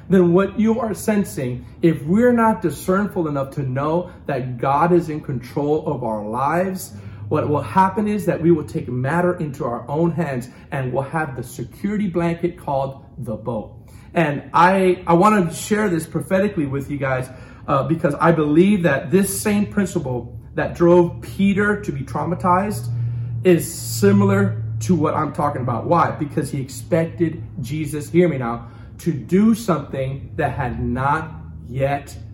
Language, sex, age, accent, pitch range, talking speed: English, male, 40-59, American, 130-180 Hz, 165 wpm